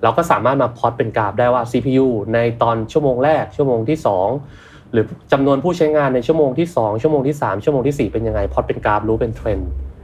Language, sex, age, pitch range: Thai, male, 20-39, 105-140 Hz